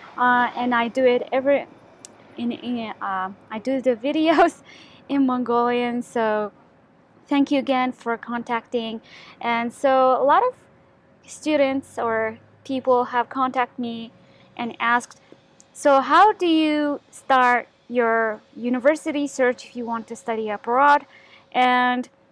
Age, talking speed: 20-39, 130 wpm